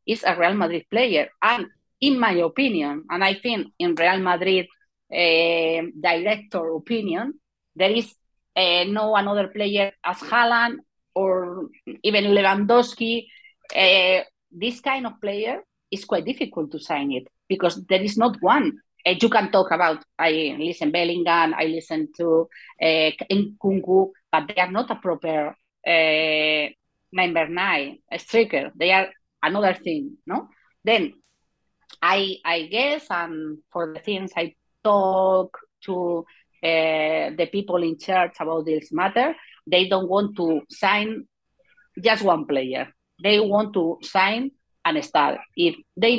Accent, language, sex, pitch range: Spanish, English, female, 165-215 Hz